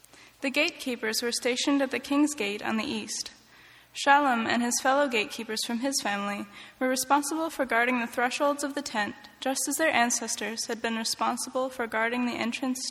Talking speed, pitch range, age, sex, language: 180 wpm, 230-275 Hz, 10-29, female, English